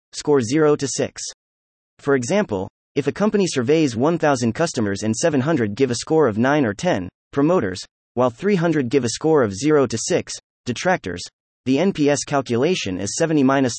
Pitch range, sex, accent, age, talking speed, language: 110-155 Hz, male, American, 30-49, 165 wpm, English